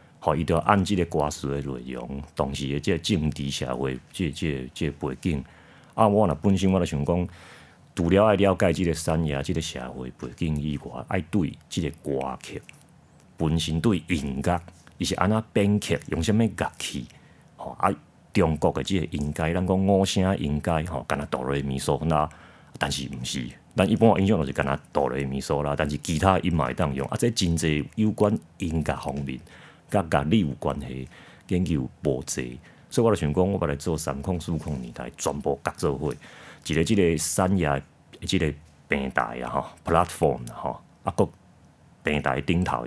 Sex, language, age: male, Chinese, 40-59